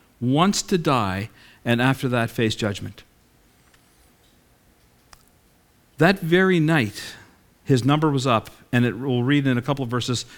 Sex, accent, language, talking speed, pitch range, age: male, American, English, 140 wpm, 115-150 Hz, 50-69